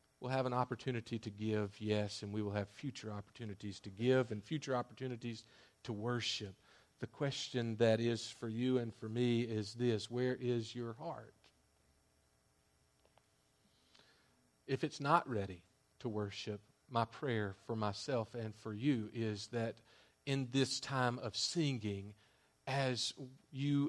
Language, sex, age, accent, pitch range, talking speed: English, male, 40-59, American, 105-130 Hz, 140 wpm